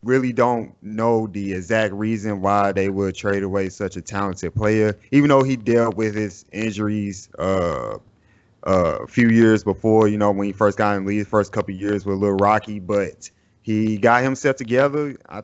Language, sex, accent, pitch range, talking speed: English, male, American, 100-120 Hz, 195 wpm